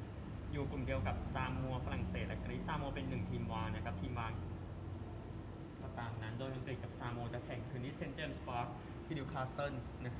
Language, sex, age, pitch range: Thai, male, 20-39, 75-130 Hz